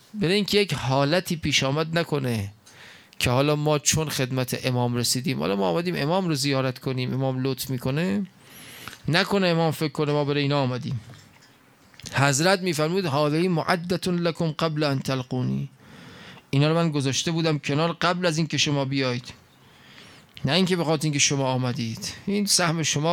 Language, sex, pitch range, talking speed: Persian, male, 125-160 Hz, 165 wpm